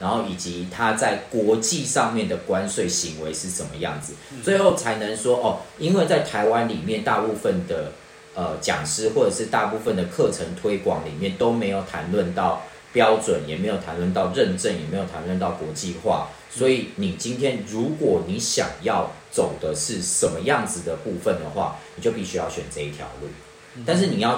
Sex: male